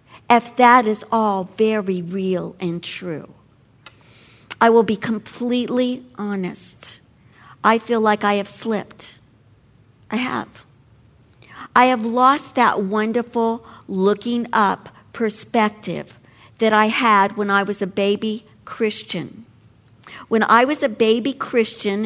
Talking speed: 120 wpm